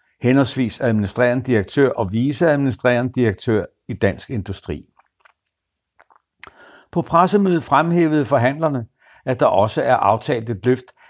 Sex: male